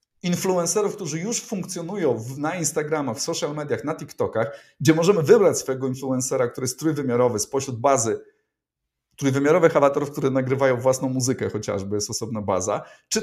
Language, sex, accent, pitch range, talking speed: Polish, male, native, 120-150 Hz, 150 wpm